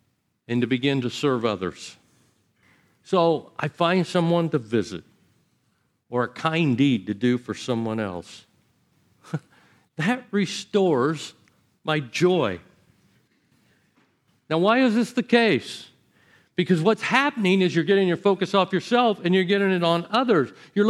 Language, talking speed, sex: English, 140 wpm, male